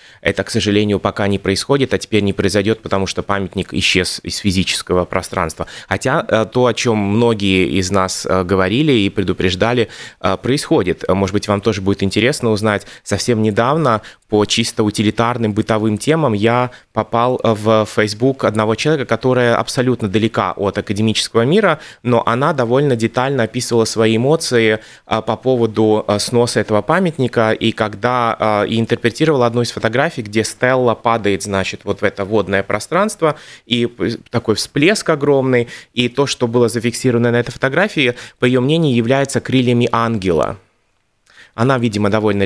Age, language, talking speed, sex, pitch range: 20-39, Russian, 145 wpm, male, 105-125 Hz